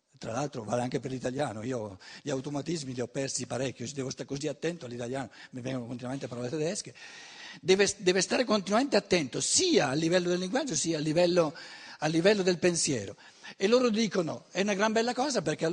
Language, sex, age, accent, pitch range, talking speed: Italian, male, 60-79, native, 145-210 Hz, 190 wpm